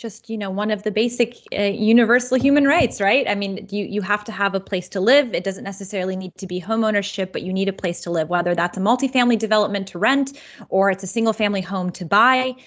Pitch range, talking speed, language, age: 180-230 Hz, 250 wpm, English, 20-39